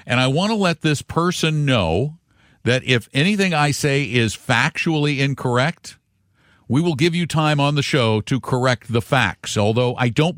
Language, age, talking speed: English, 50-69, 180 wpm